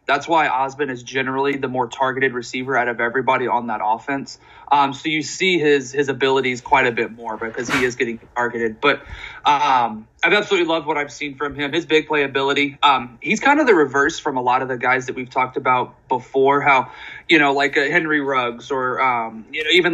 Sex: male